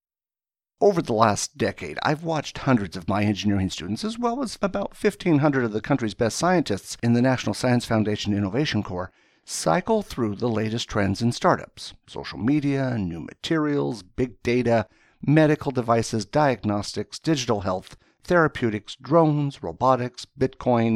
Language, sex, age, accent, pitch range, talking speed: English, male, 60-79, American, 105-145 Hz, 145 wpm